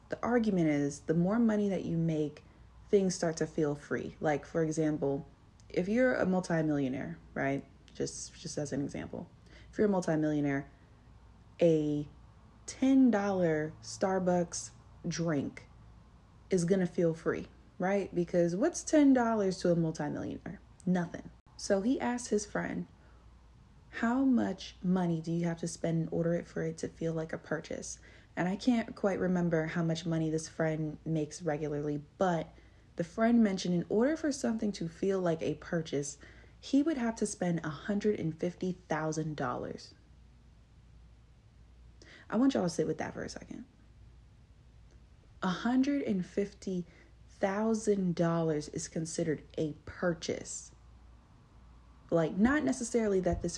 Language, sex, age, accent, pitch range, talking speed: English, female, 20-39, American, 155-200 Hz, 135 wpm